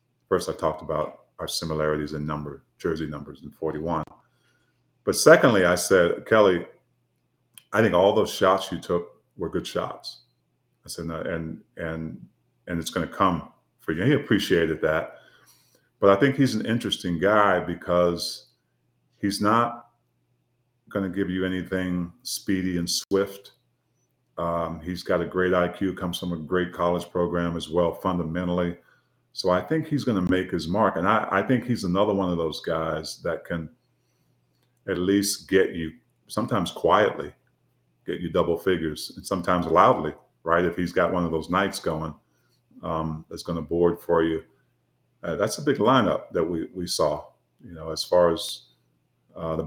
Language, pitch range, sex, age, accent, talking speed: English, 80-95 Hz, male, 40-59, American, 170 wpm